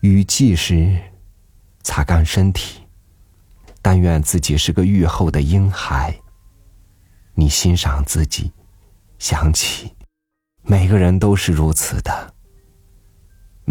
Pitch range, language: 80-100 Hz, Chinese